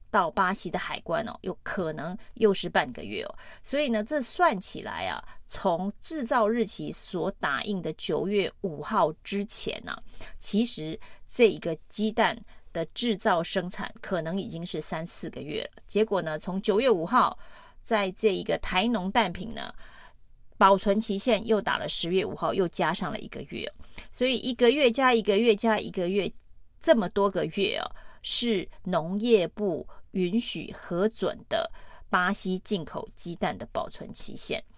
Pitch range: 185-225 Hz